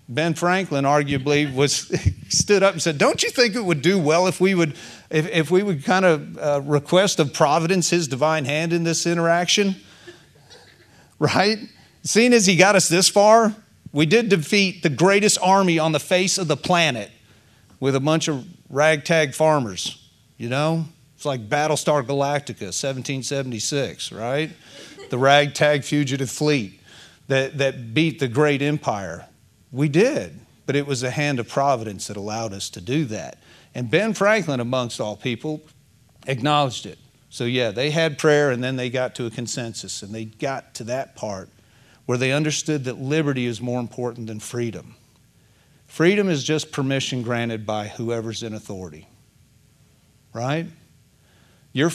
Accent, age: American, 40-59